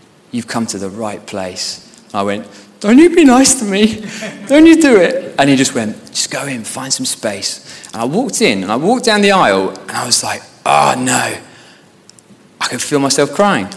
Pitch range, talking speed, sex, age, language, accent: 110-180 Hz, 215 wpm, male, 20-39, English, British